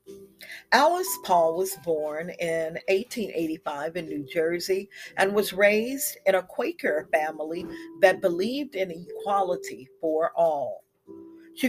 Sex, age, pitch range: female, 50-69, 170-215 Hz